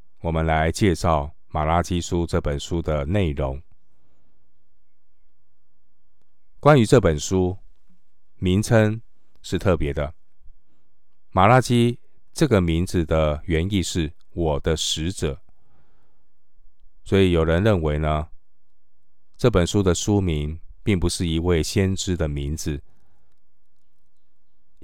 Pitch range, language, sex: 80-100 Hz, Chinese, male